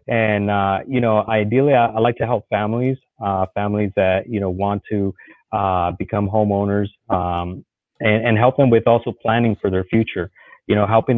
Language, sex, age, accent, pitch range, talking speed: English, male, 30-49, American, 95-110 Hz, 190 wpm